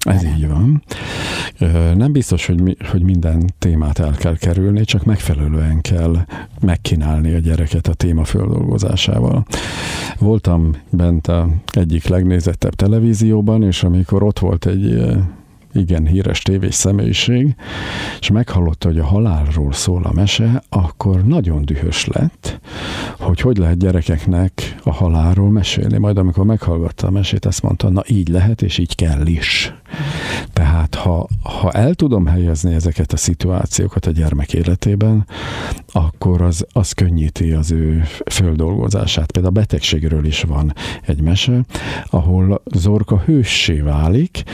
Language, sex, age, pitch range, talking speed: Hungarian, male, 50-69, 85-105 Hz, 135 wpm